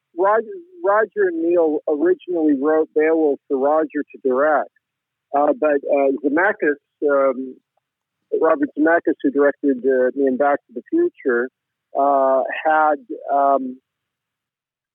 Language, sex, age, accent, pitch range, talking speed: English, male, 50-69, American, 135-170 Hz, 110 wpm